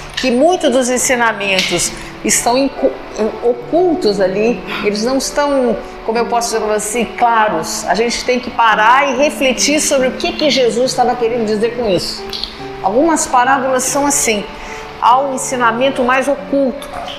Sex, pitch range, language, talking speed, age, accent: female, 230-290 Hz, Portuguese, 145 wpm, 50-69, Brazilian